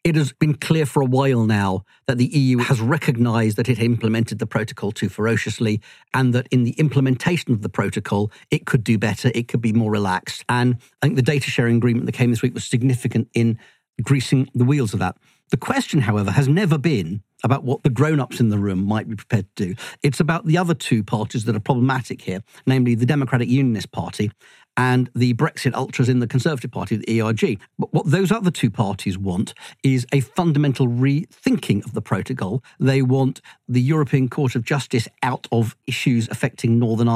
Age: 50-69